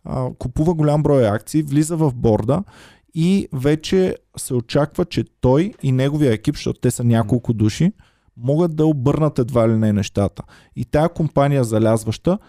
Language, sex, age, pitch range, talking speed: Bulgarian, male, 20-39, 120-160 Hz, 155 wpm